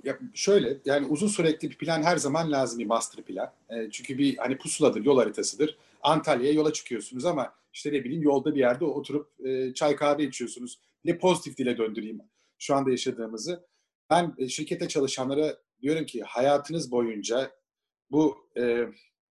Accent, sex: native, male